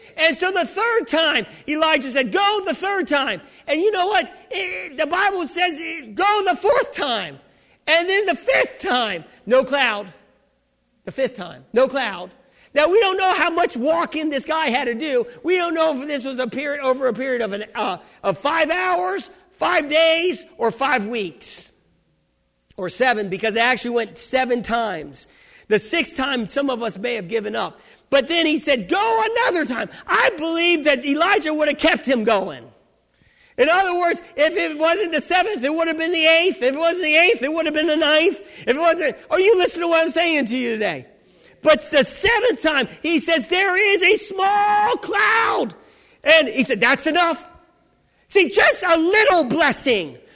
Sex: male